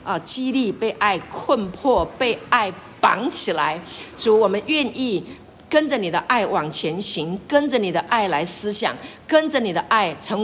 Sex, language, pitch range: female, Chinese, 200-265 Hz